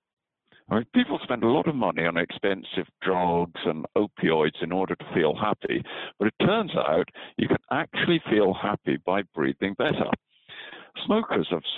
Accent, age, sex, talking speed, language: British, 60-79, male, 155 wpm, English